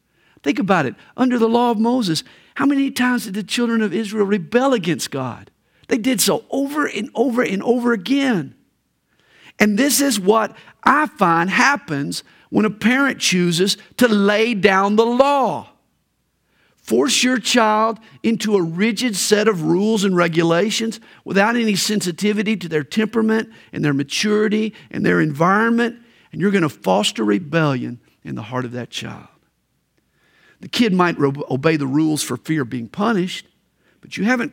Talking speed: 160 wpm